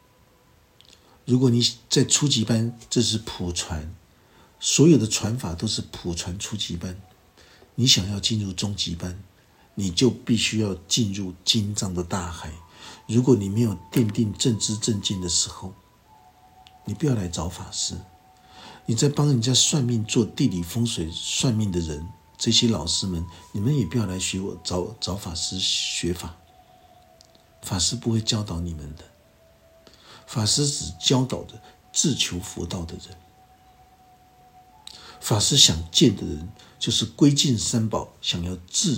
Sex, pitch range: male, 90-125 Hz